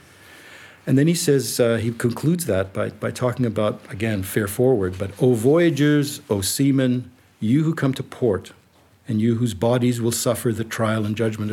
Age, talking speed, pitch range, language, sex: 50-69, 180 wpm, 100-130 Hz, English, male